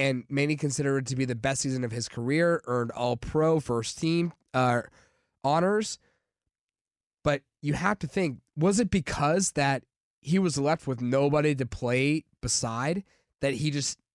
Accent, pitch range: American, 130-165 Hz